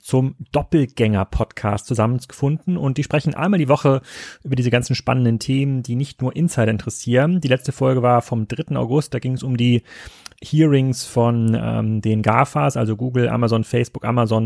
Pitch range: 115-140 Hz